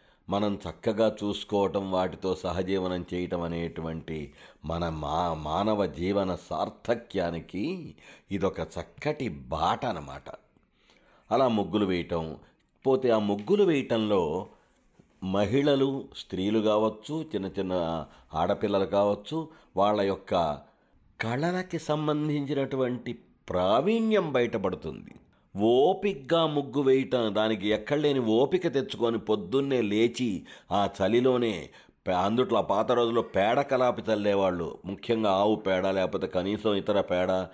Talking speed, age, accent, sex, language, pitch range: 95 wpm, 50-69, native, male, Telugu, 95-120 Hz